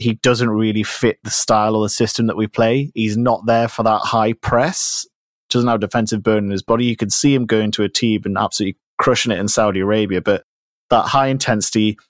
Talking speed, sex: 225 wpm, male